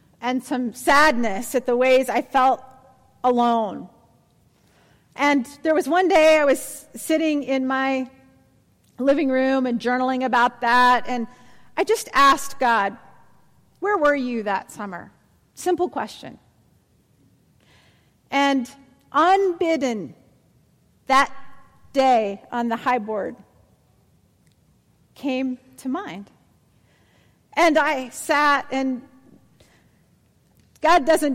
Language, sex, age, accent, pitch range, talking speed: English, female, 40-59, American, 240-310 Hz, 105 wpm